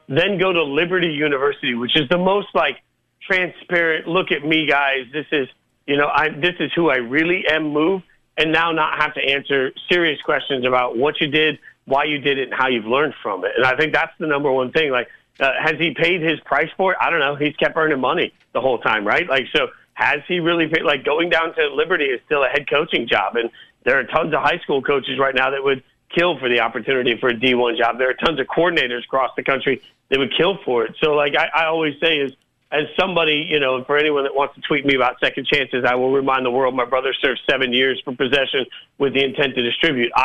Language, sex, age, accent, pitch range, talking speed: English, male, 40-59, American, 130-160 Hz, 245 wpm